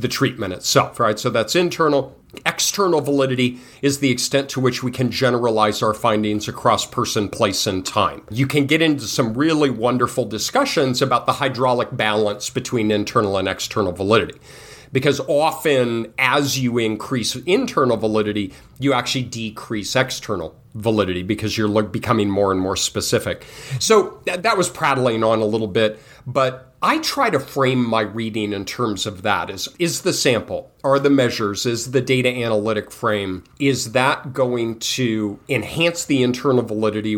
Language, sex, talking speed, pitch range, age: English, male, 160 wpm, 110-140 Hz, 40-59